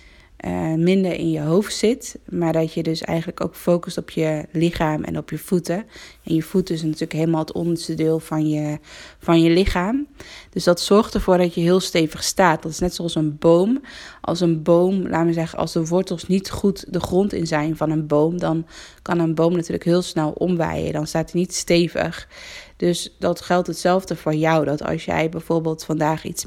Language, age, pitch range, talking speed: Dutch, 20-39, 160-180 Hz, 205 wpm